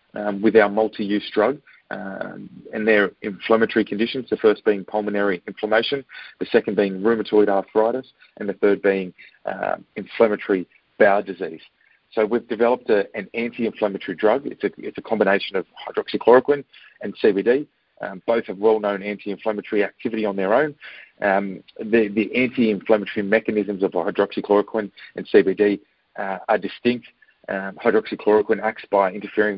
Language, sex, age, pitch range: English, male, 40-59, 100-115 Hz